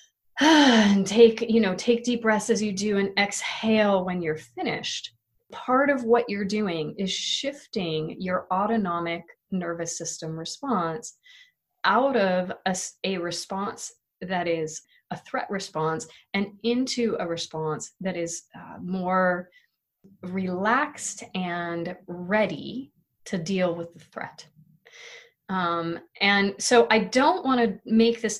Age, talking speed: 30-49, 130 wpm